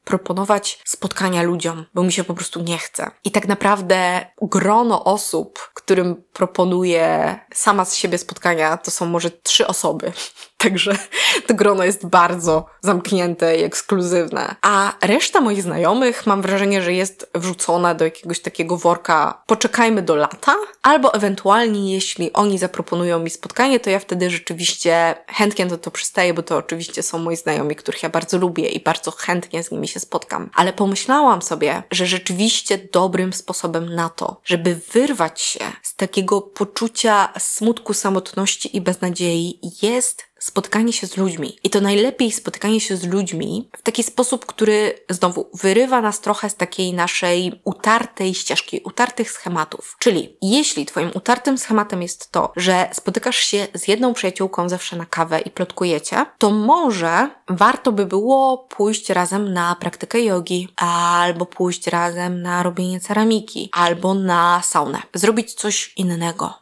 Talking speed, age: 150 wpm, 20-39